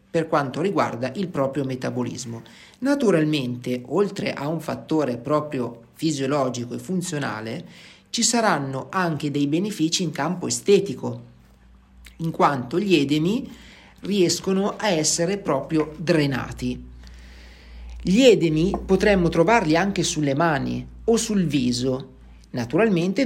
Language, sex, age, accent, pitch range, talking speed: Italian, male, 40-59, native, 135-170 Hz, 110 wpm